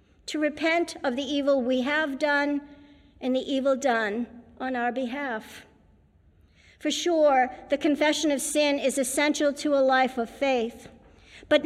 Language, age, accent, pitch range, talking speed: English, 50-69, American, 245-295 Hz, 150 wpm